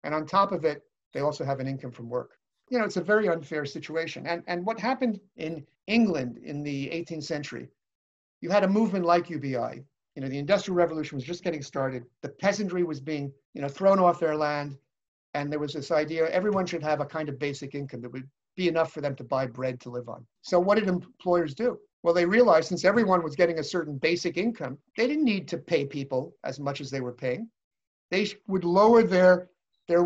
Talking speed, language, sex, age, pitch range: 225 wpm, English, male, 50-69, 140-185 Hz